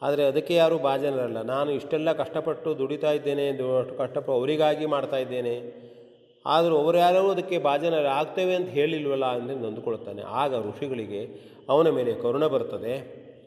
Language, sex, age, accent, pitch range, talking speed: Kannada, male, 30-49, native, 115-175 Hz, 120 wpm